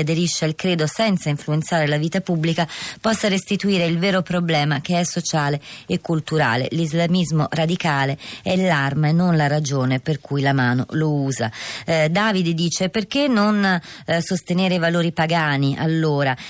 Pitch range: 160-190 Hz